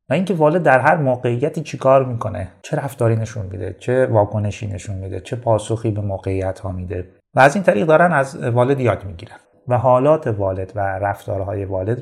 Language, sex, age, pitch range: Persian, male, 30-49, 100-140 Hz